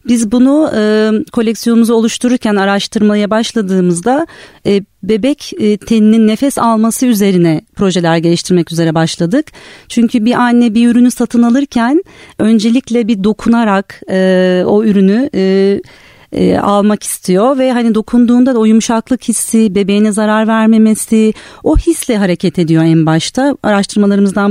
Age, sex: 40-59, female